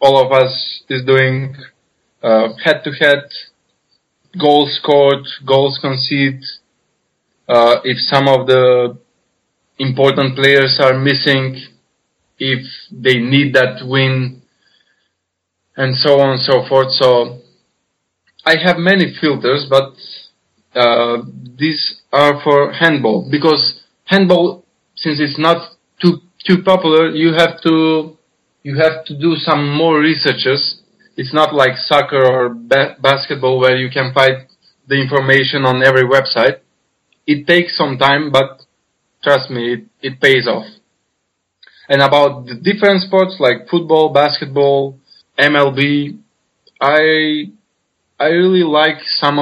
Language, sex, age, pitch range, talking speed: English, male, 20-39, 130-155 Hz, 125 wpm